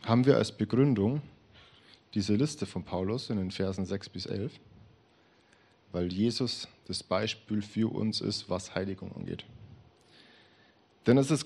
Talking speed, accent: 140 wpm, German